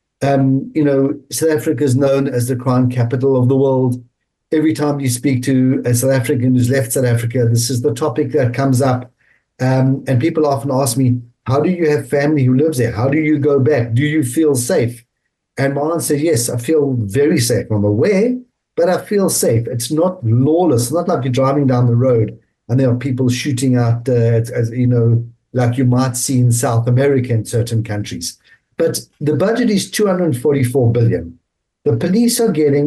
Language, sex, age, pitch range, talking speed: English, male, 50-69, 120-155 Hz, 205 wpm